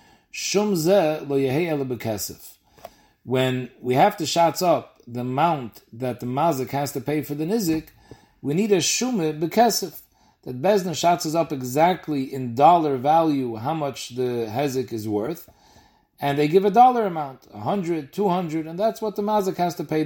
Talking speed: 175 wpm